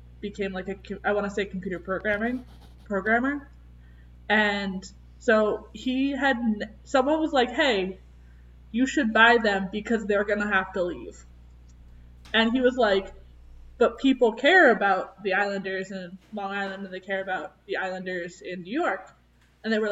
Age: 20-39